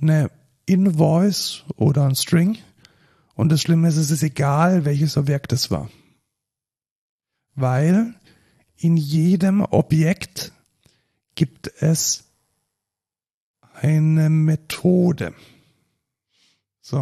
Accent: German